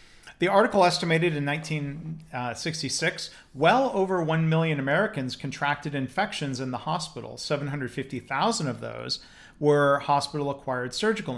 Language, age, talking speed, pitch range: English, 40-59, 110 wpm, 130-165 Hz